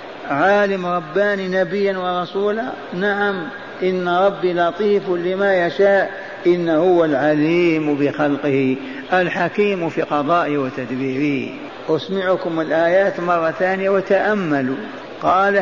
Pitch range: 170-200 Hz